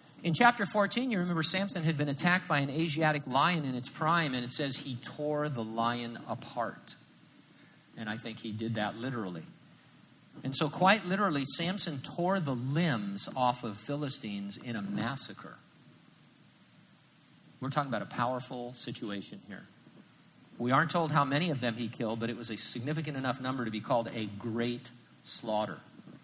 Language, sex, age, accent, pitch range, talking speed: English, male, 50-69, American, 115-150 Hz, 170 wpm